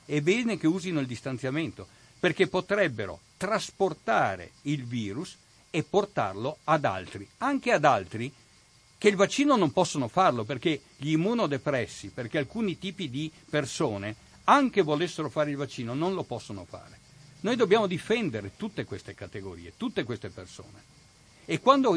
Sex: male